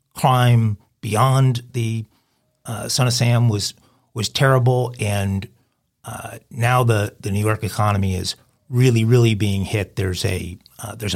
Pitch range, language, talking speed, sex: 100-120 Hz, English, 145 wpm, male